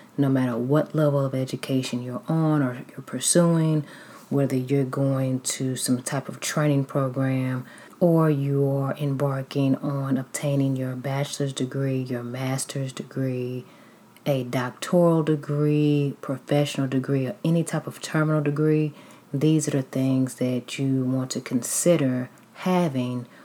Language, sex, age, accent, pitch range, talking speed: English, female, 30-49, American, 130-145 Hz, 135 wpm